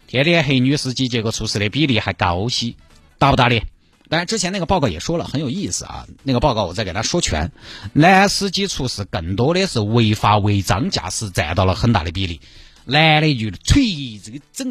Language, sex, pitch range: Chinese, male, 95-150 Hz